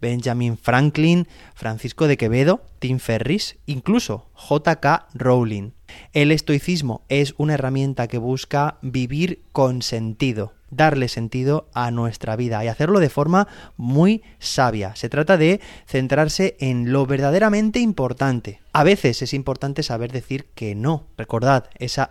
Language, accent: Spanish, Spanish